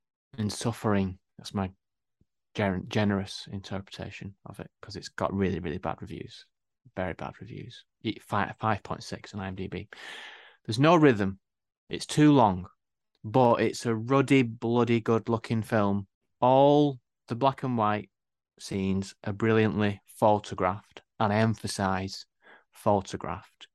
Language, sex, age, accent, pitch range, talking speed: English, male, 30-49, British, 95-120 Hz, 130 wpm